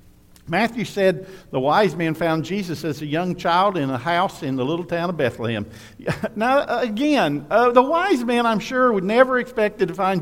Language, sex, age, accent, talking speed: English, male, 50-69, American, 195 wpm